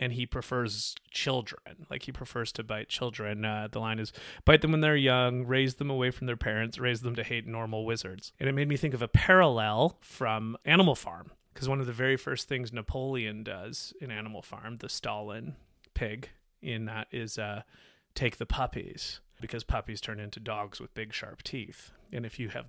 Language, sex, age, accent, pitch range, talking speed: English, male, 30-49, American, 110-130 Hz, 205 wpm